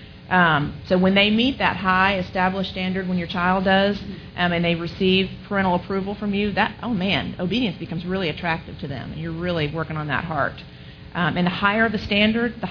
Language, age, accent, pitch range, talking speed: English, 40-59, American, 165-195 Hz, 210 wpm